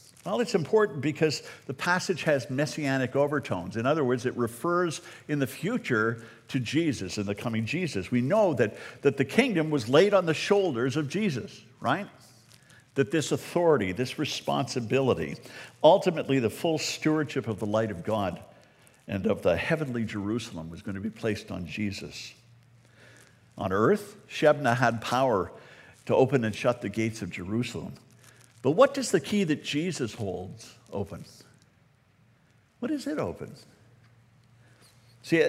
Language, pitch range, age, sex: English, 115-150 Hz, 60-79, male